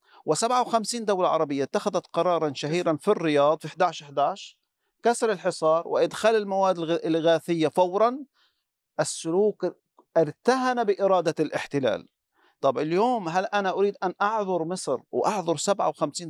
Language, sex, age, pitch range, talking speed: Arabic, male, 50-69, 160-210 Hz, 110 wpm